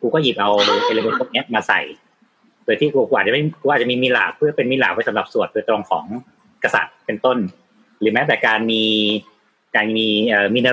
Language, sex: Thai, male